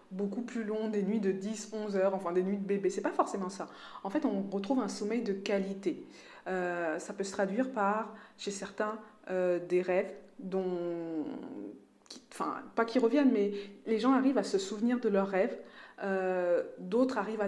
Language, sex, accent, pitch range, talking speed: French, female, French, 190-220 Hz, 190 wpm